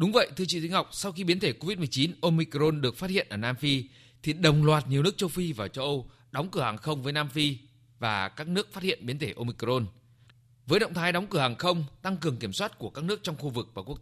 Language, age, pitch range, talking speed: Vietnamese, 20-39, 120-170 Hz, 265 wpm